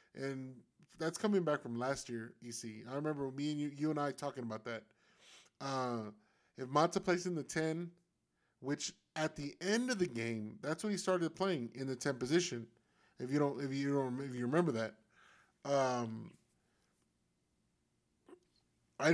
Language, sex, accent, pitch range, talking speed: English, male, American, 130-175 Hz, 170 wpm